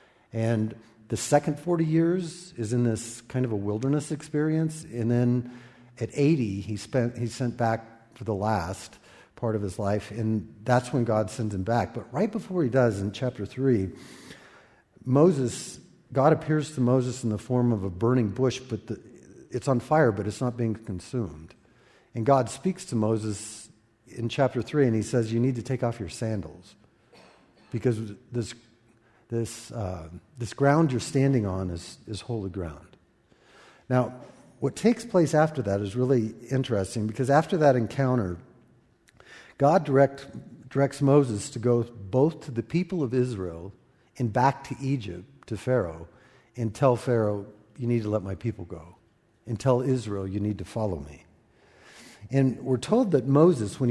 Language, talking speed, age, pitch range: English, 170 wpm, 50-69, 110-135 Hz